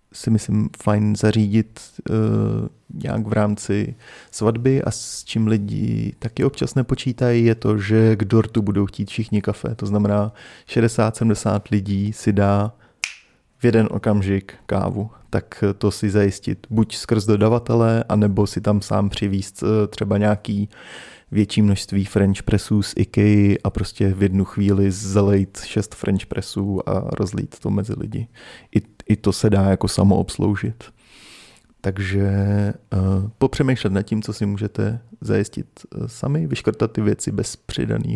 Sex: male